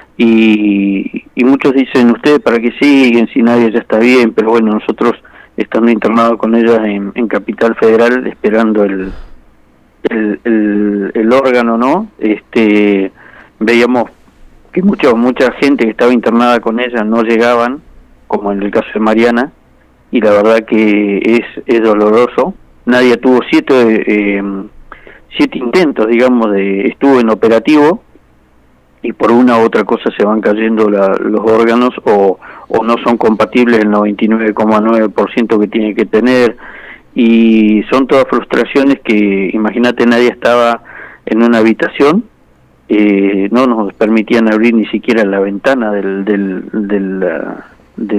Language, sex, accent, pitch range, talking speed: Spanish, male, Argentinian, 105-120 Hz, 140 wpm